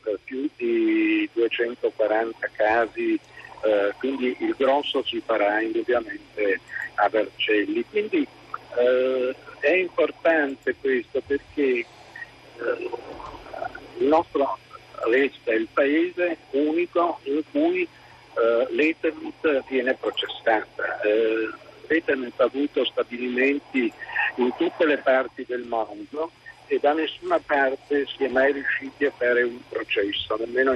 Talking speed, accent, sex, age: 110 wpm, native, male, 50-69